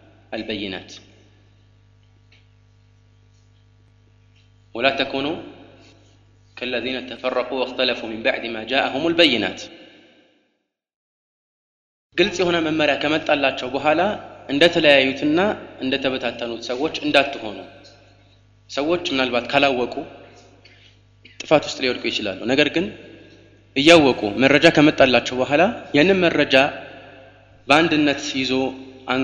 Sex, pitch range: male, 105-140 Hz